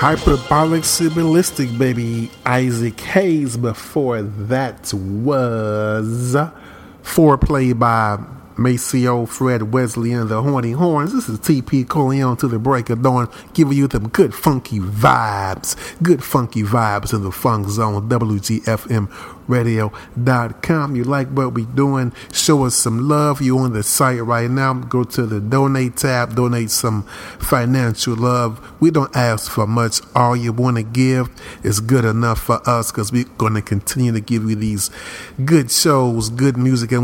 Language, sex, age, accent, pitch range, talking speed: English, male, 40-59, American, 110-130 Hz, 155 wpm